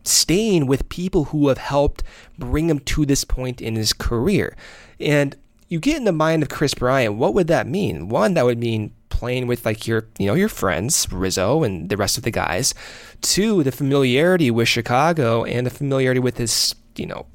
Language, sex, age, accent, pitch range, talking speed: English, male, 20-39, American, 115-165 Hz, 200 wpm